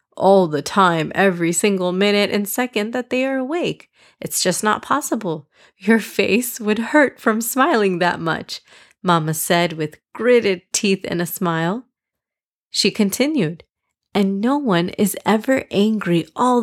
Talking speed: 150 wpm